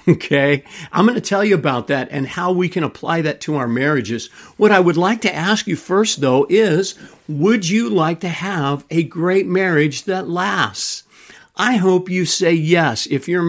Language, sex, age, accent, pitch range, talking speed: English, male, 50-69, American, 140-185 Hz, 195 wpm